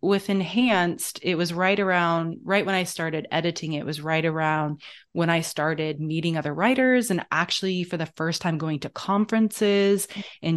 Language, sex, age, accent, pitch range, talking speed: English, female, 20-39, American, 165-205 Hz, 175 wpm